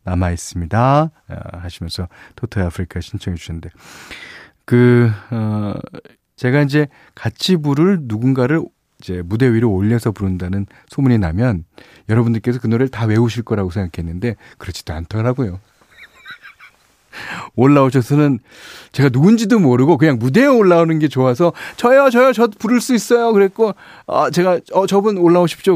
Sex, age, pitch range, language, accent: male, 40-59, 100-155 Hz, Korean, native